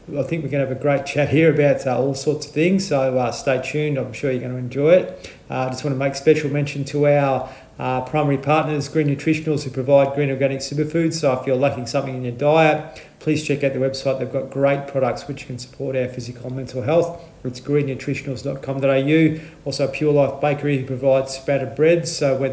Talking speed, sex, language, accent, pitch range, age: 220 wpm, male, English, Australian, 130-150 Hz, 40-59